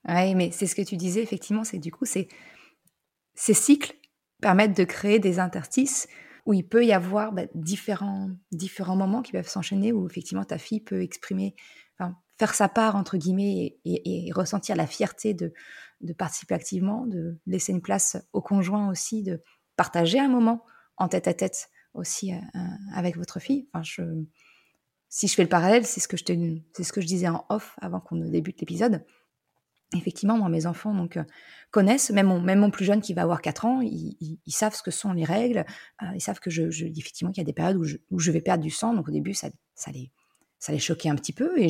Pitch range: 170-215 Hz